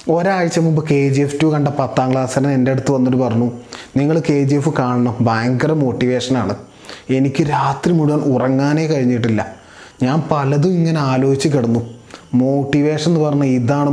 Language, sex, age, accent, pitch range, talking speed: Malayalam, male, 20-39, native, 125-150 Hz, 140 wpm